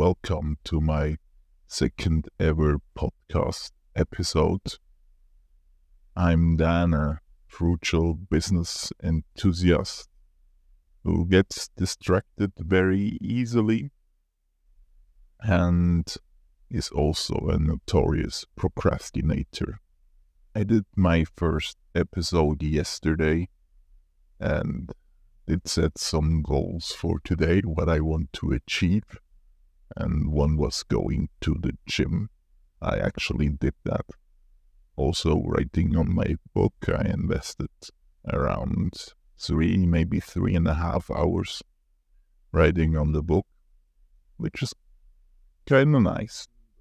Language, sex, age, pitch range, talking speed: English, male, 50-69, 70-90 Hz, 100 wpm